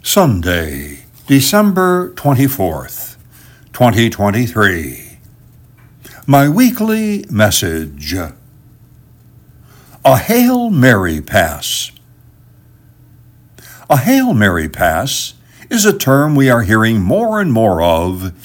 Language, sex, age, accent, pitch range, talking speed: English, male, 60-79, American, 105-140 Hz, 80 wpm